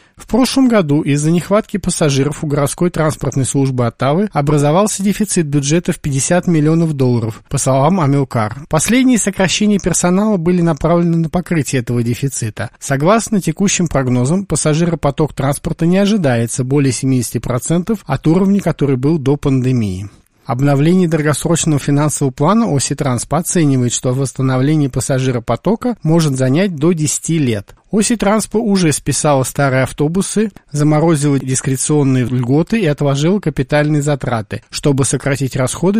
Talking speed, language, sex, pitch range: 125 wpm, Russian, male, 135-180 Hz